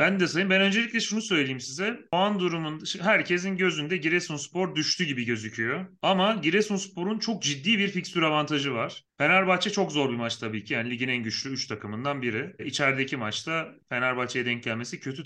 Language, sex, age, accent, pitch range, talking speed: Turkish, male, 30-49, native, 135-185 Hz, 175 wpm